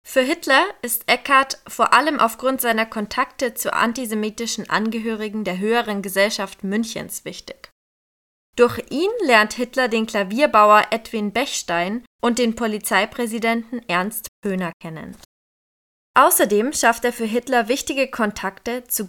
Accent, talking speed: German, 125 wpm